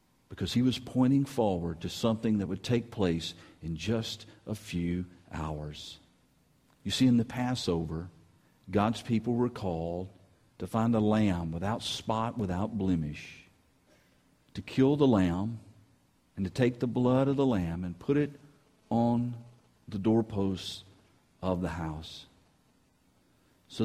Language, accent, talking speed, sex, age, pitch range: English, American, 140 wpm, male, 50-69, 90-120 Hz